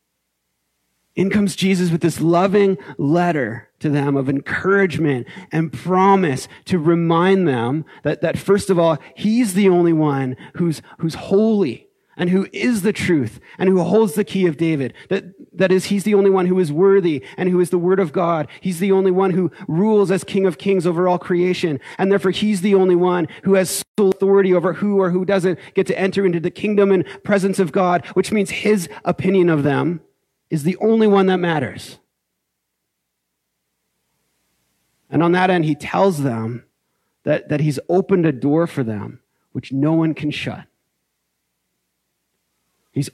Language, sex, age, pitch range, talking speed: English, male, 30-49, 140-190 Hz, 180 wpm